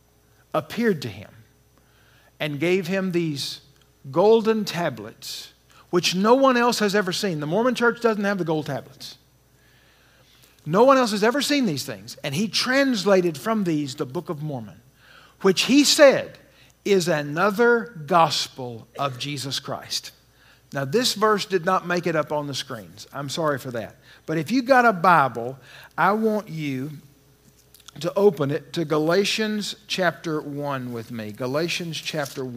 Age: 50-69